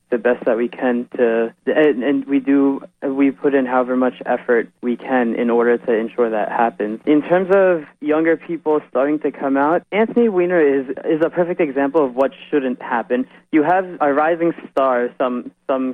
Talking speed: 190 wpm